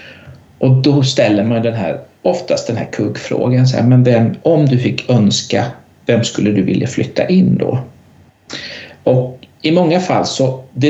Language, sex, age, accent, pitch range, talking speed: Swedish, male, 60-79, native, 115-155 Hz, 150 wpm